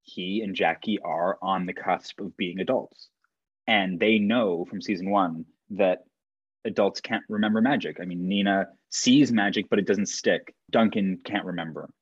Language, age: English, 20-39